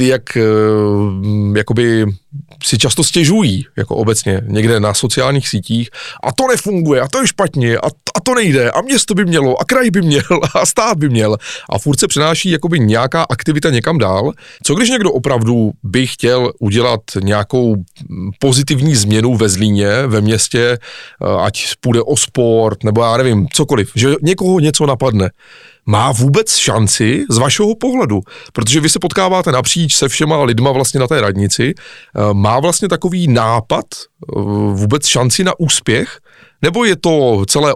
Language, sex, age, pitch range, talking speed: Czech, male, 30-49, 115-155 Hz, 155 wpm